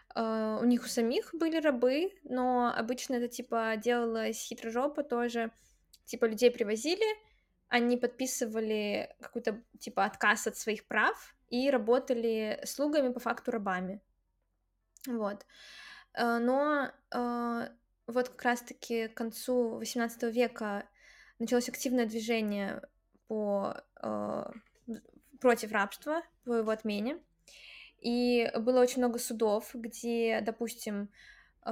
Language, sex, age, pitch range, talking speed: Russian, female, 20-39, 225-255 Hz, 110 wpm